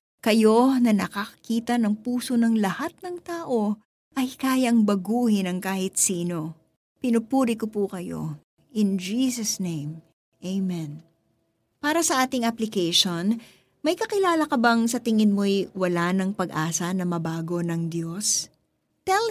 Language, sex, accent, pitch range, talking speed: Filipino, female, native, 185-255 Hz, 130 wpm